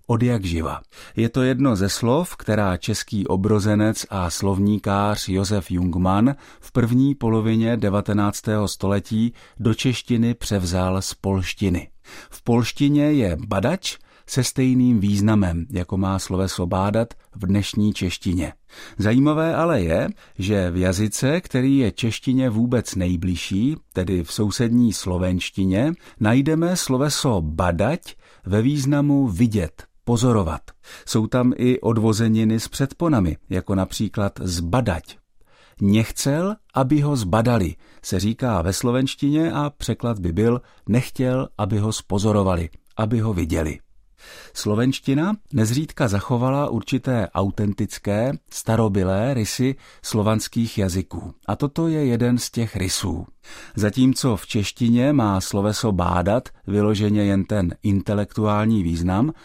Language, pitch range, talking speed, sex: Czech, 95-125 Hz, 115 wpm, male